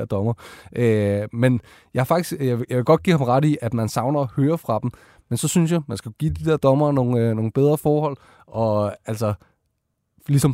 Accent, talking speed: native, 220 wpm